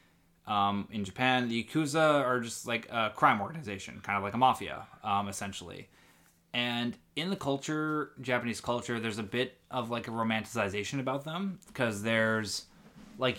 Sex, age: male, 20-39